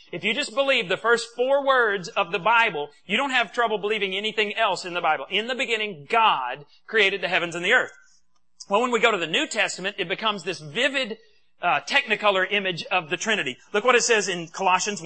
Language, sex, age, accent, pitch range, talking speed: English, male, 40-59, American, 190-245 Hz, 220 wpm